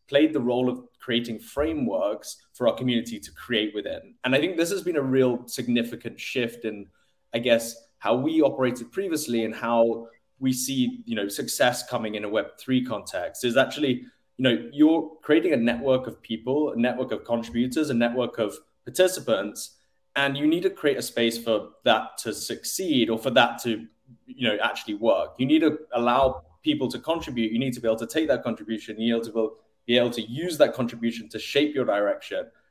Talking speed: 200 wpm